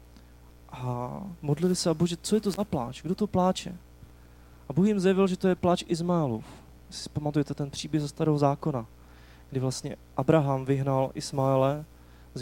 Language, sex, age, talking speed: Czech, male, 30-49, 170 wpm